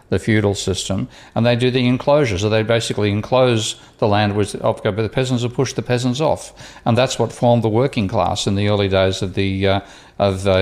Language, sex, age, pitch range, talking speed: English, male, 50-69, 95-115 Hz, 220 wpm